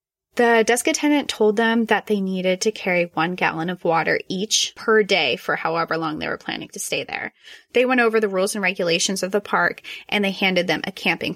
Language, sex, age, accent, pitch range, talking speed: English, female, 20-39, American, 185-230 Hz, 220 wpm